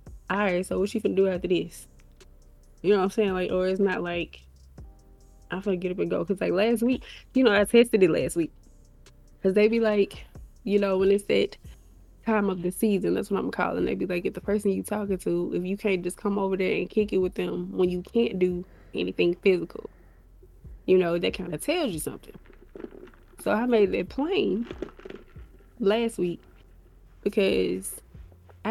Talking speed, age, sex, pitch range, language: 200 wpm, 20-39, female, 180-210 Hz, English